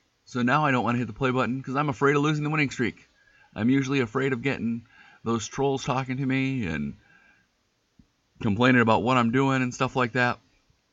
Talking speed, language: 210 wpm, English